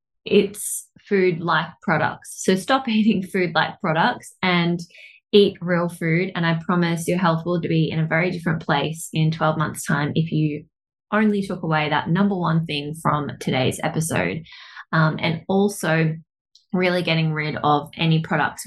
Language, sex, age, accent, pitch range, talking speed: English, female, 20-39, Australian, 155-180 Hz, 160 wpm